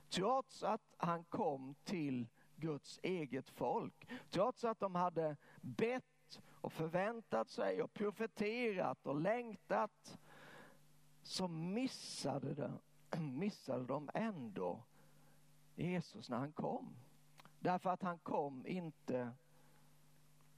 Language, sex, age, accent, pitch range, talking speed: Swedish, male, 50-69, native, 145-185 Hz, 100 wpm